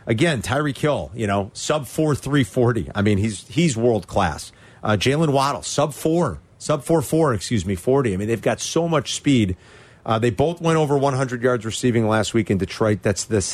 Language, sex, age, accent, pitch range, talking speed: English, male, 40-59, American, 110-150 Hz, 200 wpm